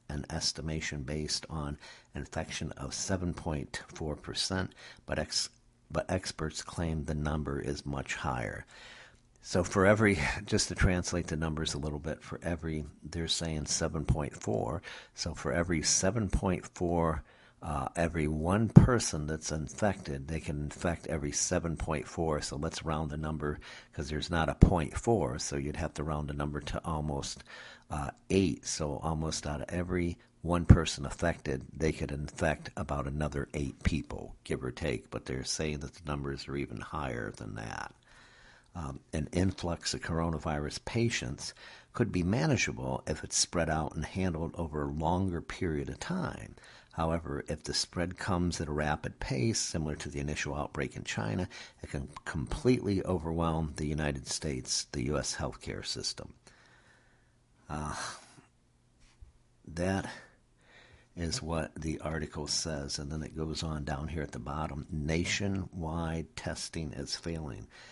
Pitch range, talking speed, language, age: 75-85 Hz, 150 wpm, English, 60-79